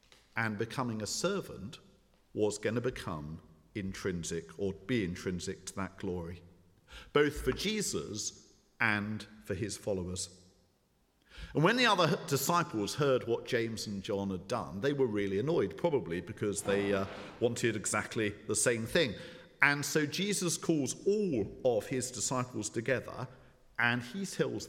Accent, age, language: British, 50-69, English